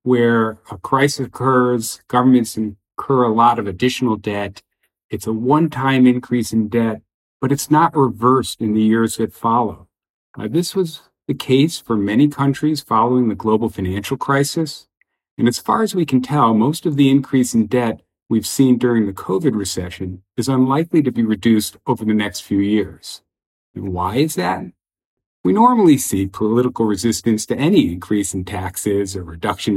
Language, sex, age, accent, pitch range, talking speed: English, male, 50-69, American, 100-135 Hz, 170 wpm